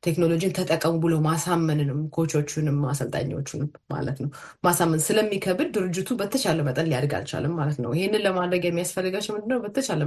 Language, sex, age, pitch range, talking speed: Amharic, female, 30-49, 145-180 Hz, 125 wpm